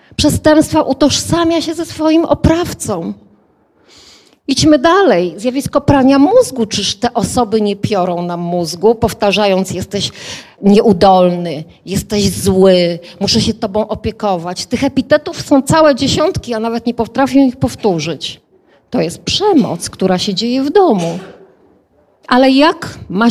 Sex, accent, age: female, native, 40-59